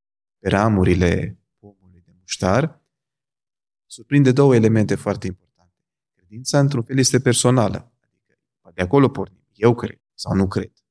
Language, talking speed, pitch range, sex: Romanian, 140 wpm, 100-125 Hz, male